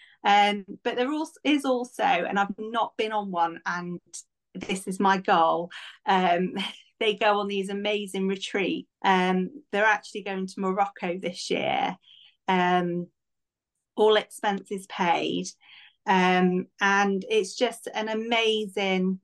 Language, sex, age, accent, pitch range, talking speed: English, female, 30-49, British, 185-220 Hz, 130 wpm